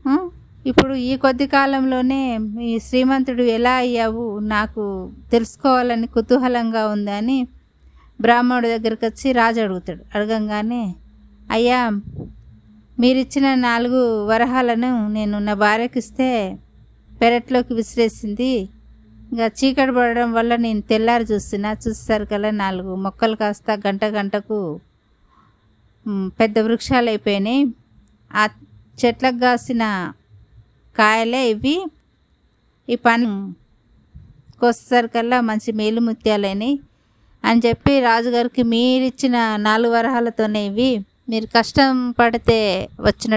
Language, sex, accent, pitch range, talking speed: Telugu, female, native, 205-240 Hz, 90 wpm